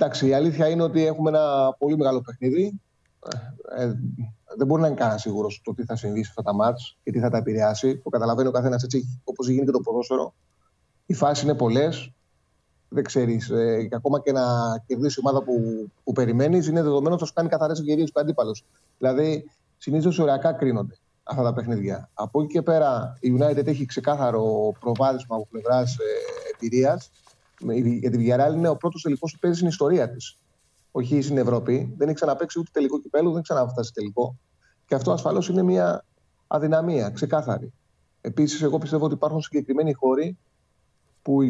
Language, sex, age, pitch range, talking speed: Greek, male, 30-49, 120-150 Hz, 180 wpm